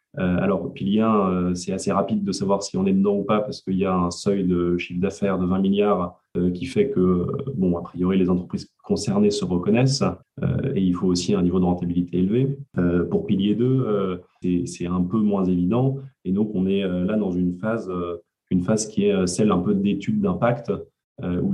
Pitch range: 90-120 Hz